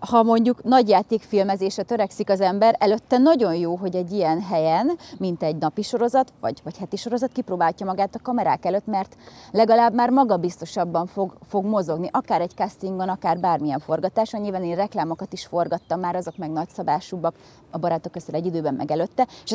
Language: Hungarian